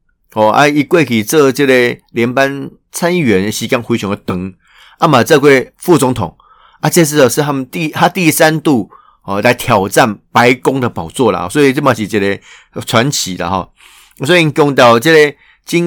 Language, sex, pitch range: Chinese, male, 110-145 Hz